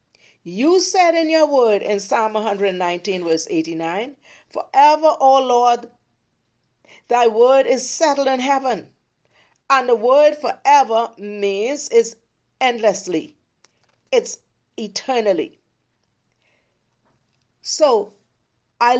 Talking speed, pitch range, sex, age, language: 95 wpm, 225-315 Hz, female, 40-59, English